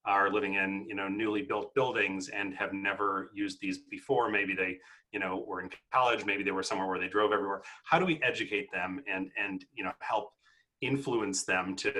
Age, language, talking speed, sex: 30-49, English, 210 wpm, male